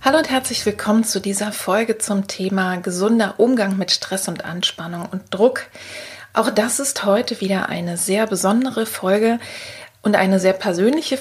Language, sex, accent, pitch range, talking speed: German, female, German, 190-225 Hz, 160 wpm